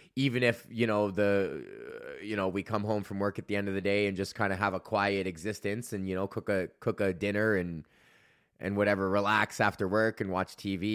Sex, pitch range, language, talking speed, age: male, 100-130 Hz, English, 240 wpm, 20-39